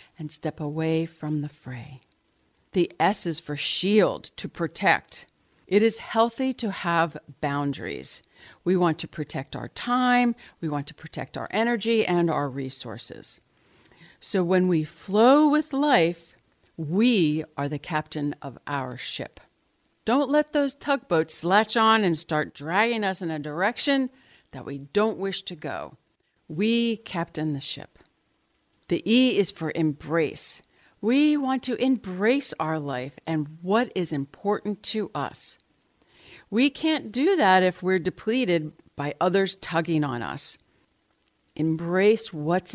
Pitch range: 155-225 Hz